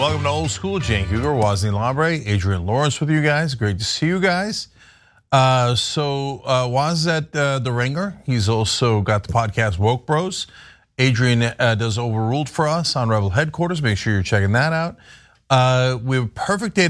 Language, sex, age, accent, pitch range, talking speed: English, male, 40-59, American, 115-165 Hz, 190 wpm